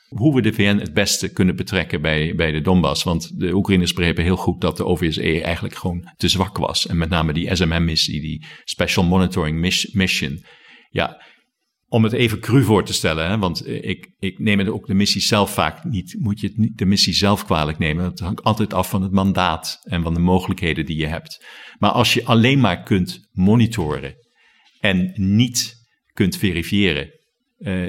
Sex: male